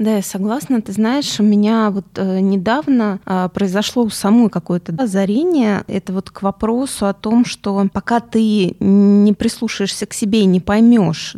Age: 20-39